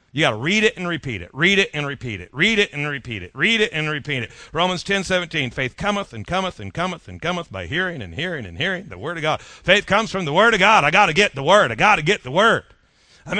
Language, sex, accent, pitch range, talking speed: English, male, American, 160-210 Hz, 280 wpm